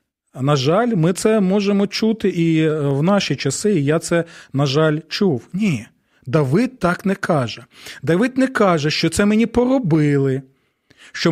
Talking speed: 155 wpm